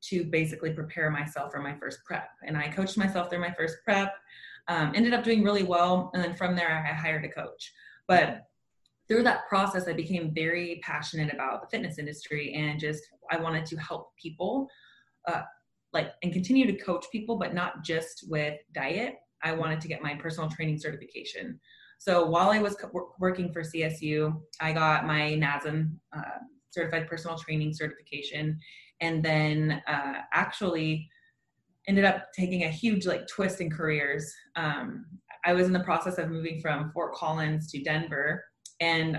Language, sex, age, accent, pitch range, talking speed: English, female, 20-39, American, 155-180 Hz, 170 wpm